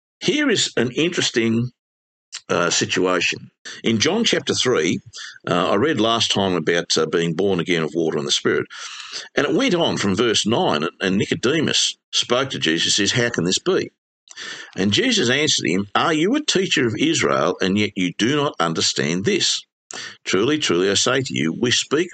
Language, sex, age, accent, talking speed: English, male, 50-69, Australian, 180 wpm